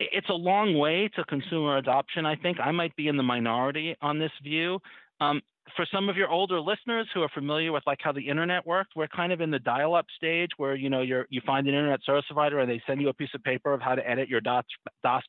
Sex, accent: male, American